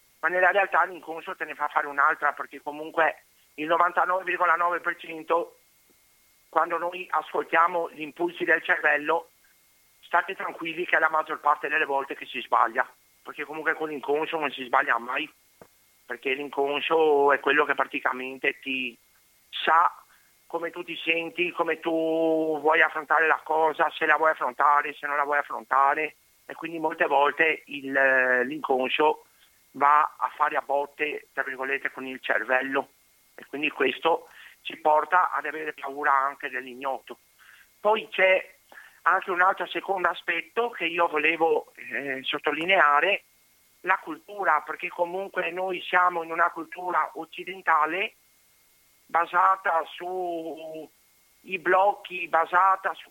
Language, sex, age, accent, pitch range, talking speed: Italian, male, 50-69, native, 145-175 Hz, 135 wpm